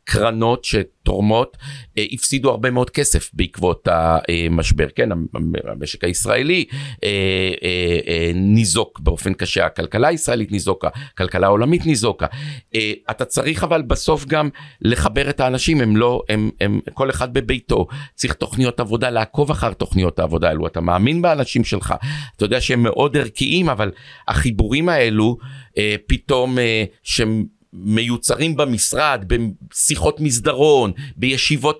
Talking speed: 130 wpm